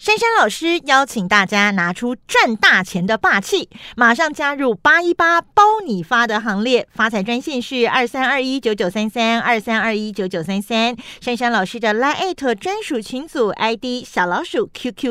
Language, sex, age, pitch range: Chinese, female, 40-59, 225-320 Hz